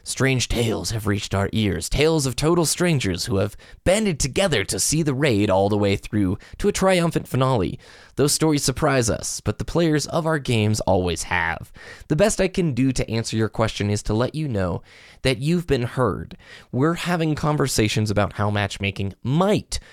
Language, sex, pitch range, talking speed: English, male, 105-145 Hz, 190 wpm